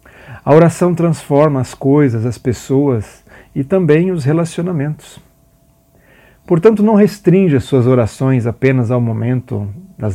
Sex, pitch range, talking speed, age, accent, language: male, 115-150 Hz, 125 wpm, 40-59, Brazilian, Portuguese